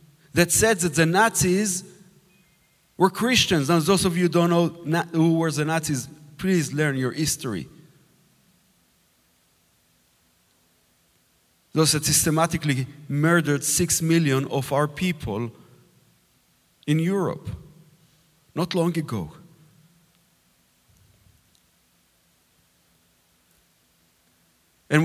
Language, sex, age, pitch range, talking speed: English, male, 40-59, 125-170 Hz, 90 wpm